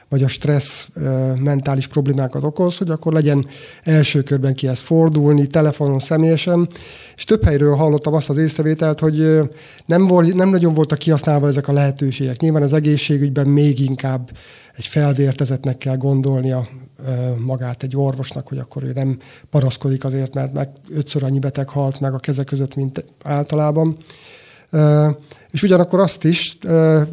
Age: 30-49